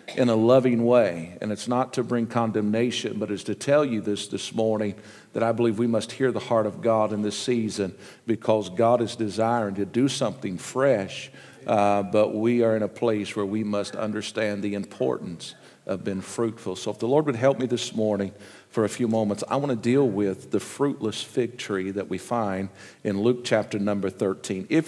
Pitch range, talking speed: 105-135 Hz, 205 wpm